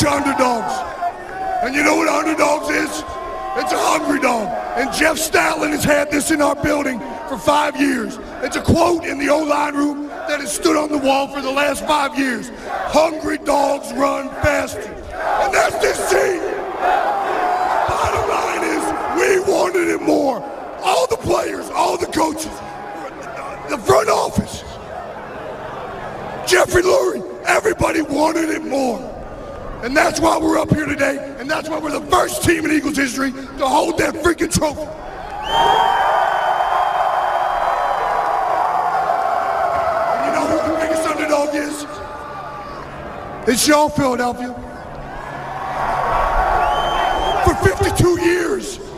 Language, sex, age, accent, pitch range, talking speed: English, male, 40-59, American, 290-350 Hz, 130 wpm